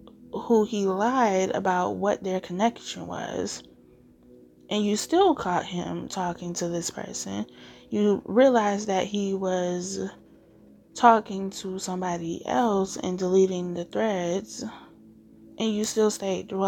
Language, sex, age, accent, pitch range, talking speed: English, female, 20-39, American, 175-195 Hz, 125 wpm